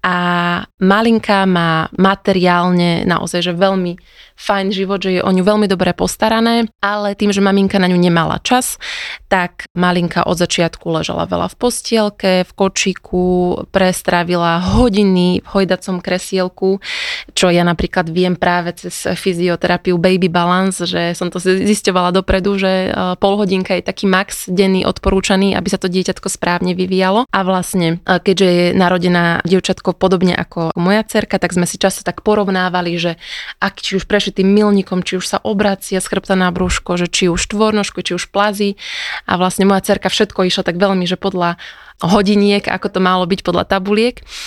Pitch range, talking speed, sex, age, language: 180-200 Hz, 160 wpm, female, 20-39, Slovak